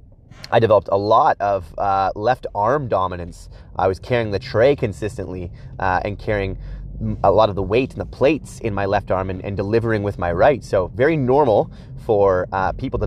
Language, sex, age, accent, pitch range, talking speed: English, male, 30-49, American, 100-125 Hz, 200 wpm